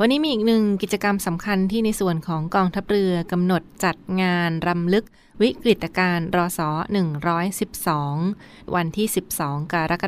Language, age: Thai, 20-39